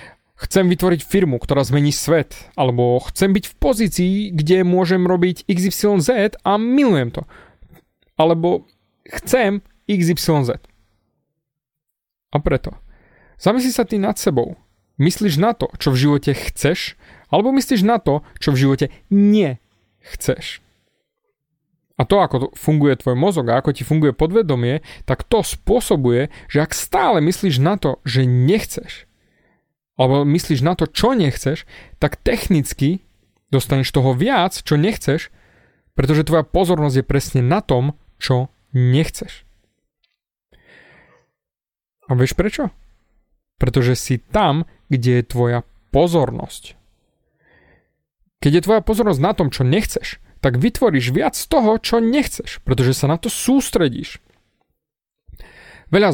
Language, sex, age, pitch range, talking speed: Slovak, male, 30-49, 130-190 Hz, 125 wpm